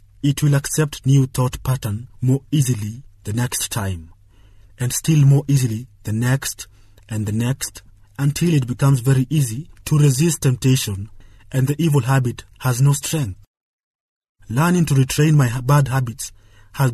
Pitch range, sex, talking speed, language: 105-140 Hz, male, 150 wpm, English